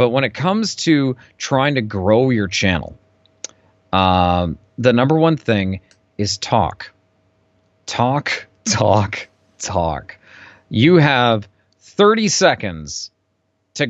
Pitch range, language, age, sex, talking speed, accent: 95-125 Hz, English, 30-49, male, 110 wpm, American